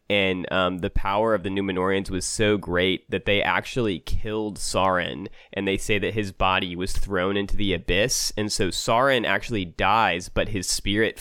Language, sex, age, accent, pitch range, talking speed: English, male, 20-39, American, 95-105 Hz, 180 wpm